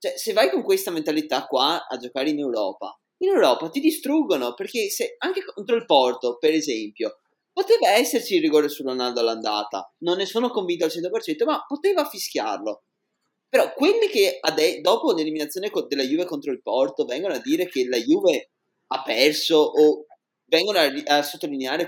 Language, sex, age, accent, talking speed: Italian, male, 20-39, native, 175 wpm